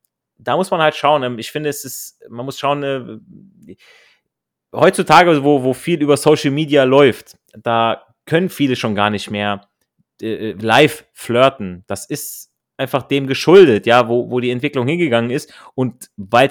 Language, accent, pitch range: German, German, 115-135 Hz